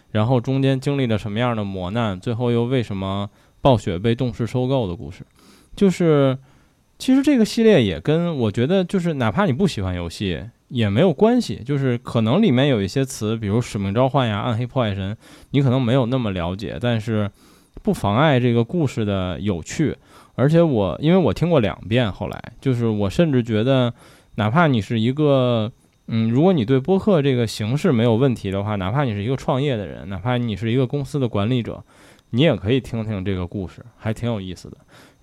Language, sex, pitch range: Chinese, male, 110-140 Hz